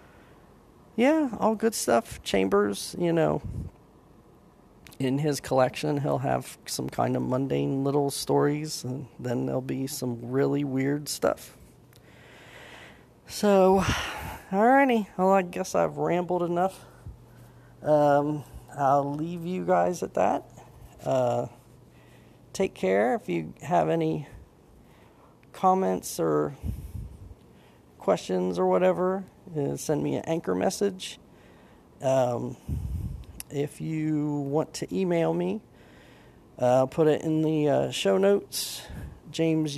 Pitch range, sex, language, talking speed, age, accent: 125-175 Hz, male, English, 115 wpm, 40-59, American